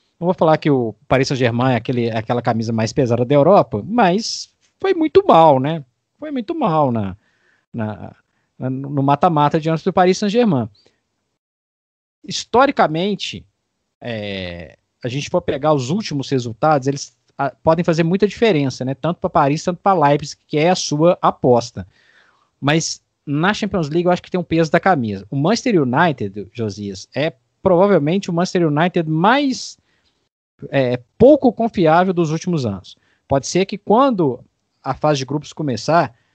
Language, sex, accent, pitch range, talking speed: Portuguese, male, Brazilian, 130-180 Hz, 150 wpm